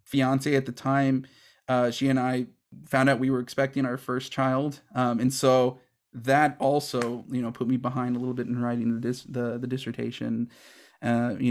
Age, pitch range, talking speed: 30-49, 120-135 Hz, 200 wpm